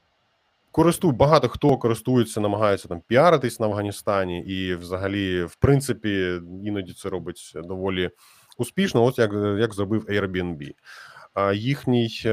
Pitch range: 95-120 Hz